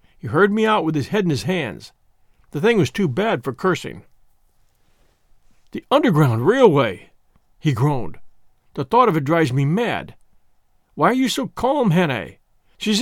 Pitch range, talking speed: 155-215 Hz, 165 wpm